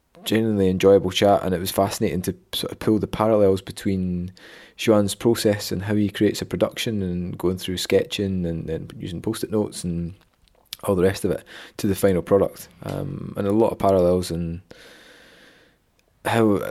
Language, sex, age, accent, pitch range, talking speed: English, male, 20-39, British, 90-110 Hz, 175 wpm